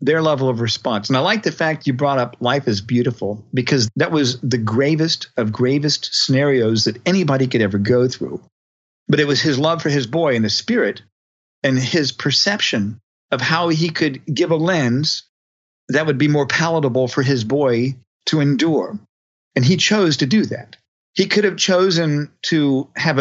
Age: 50-69